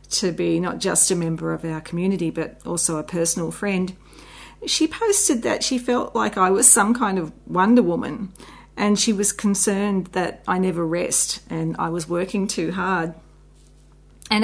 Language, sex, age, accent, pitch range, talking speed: English, female, 40-59, Australian, 170-225 Hz, 175 wpm